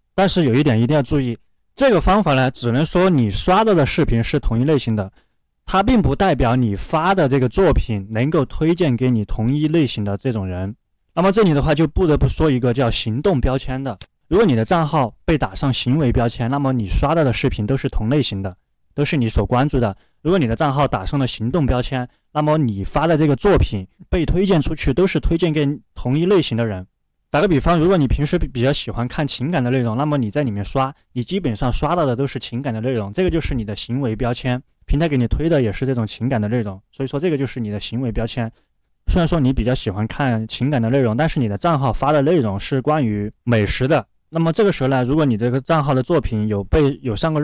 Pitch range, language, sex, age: 115-150 Hz, Chinese, male, 20-39